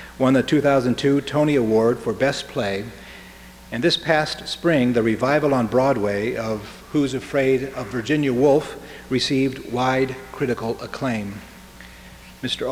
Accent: American